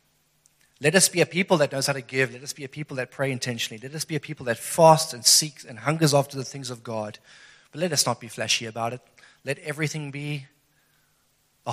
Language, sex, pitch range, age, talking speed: English, male, 120-160 Hz, 30-49, 235 wpm